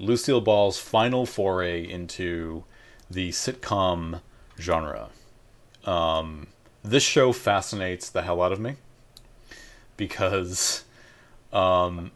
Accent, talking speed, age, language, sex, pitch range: American, 95 wpm, 30-49, English, male, 90-120 Hz